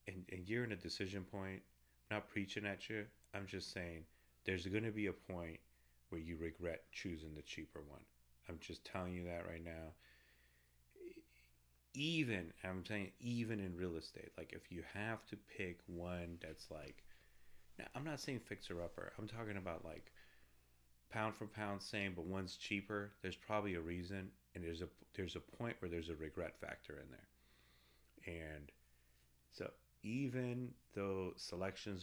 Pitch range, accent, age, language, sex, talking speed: 65-105 Hz, American, 30-49, English, male, 165 wpm